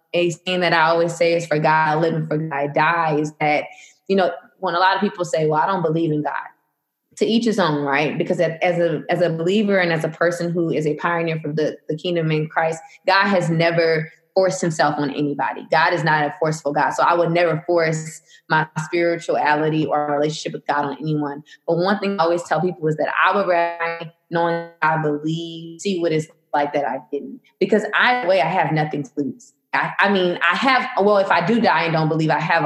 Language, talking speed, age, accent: English, 235 wpm, 20-39, American